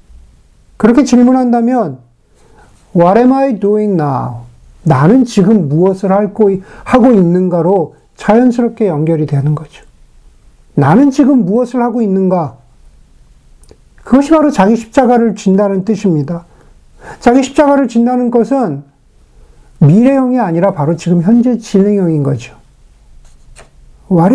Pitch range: 160-230 Hz